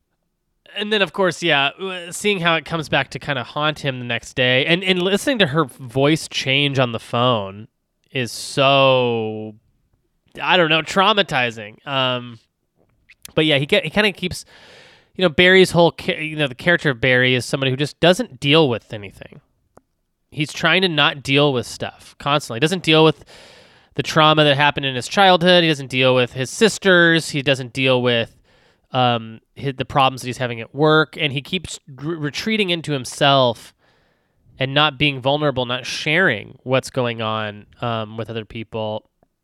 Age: 20-39